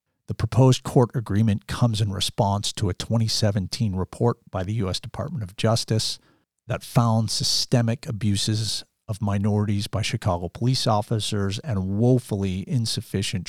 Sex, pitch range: male, 95-115 Hz